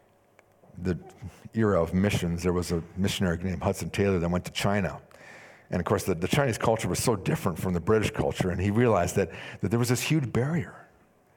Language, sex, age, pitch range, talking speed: English, male, 50-69, 105-160 Hz, 205 wpm